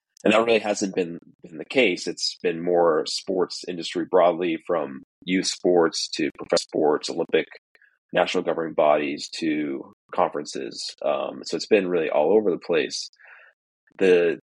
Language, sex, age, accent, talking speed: English, male, 30-49, American, 150 wpm